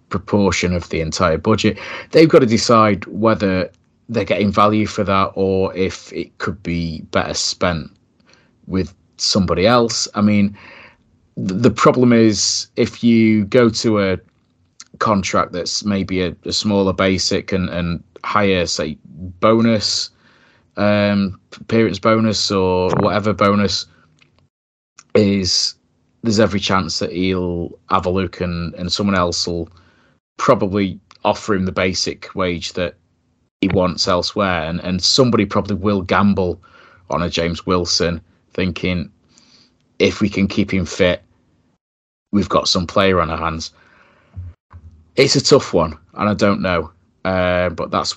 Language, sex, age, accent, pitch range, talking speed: English, male, 30-49, British, 90-105 Hz, 140 wpm